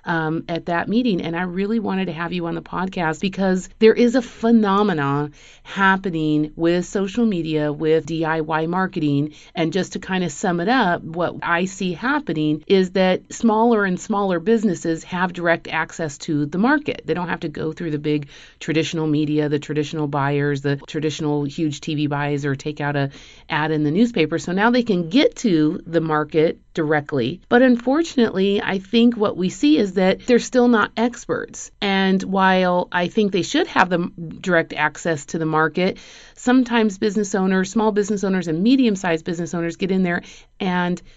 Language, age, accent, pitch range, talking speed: English, 40-59, American, 160-205 Hz, 180 wpm